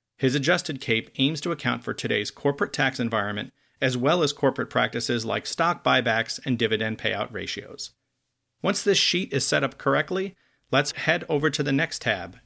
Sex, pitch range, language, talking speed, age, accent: male, 115-145 Hz, English, 180 wpm, 40-59, American